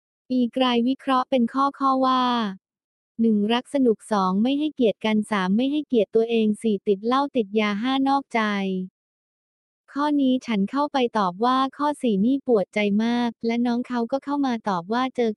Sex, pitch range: female, 210-255 Hz